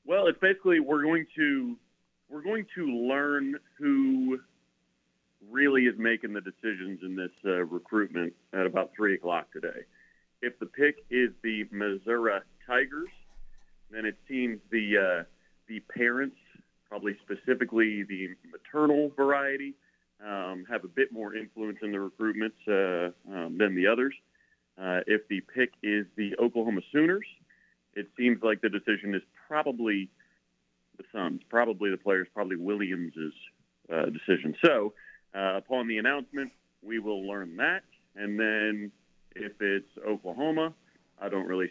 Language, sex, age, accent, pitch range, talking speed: English, male, 40-59, American, 95-130 Hz, 140 wpm